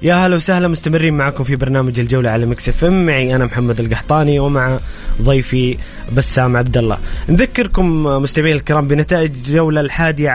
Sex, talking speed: male, 145 wpm